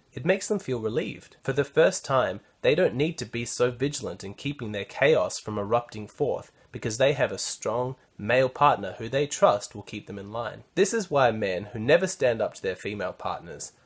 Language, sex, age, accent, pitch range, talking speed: English, male, 20-39, Australian, 115-170 Hz, 215 wpm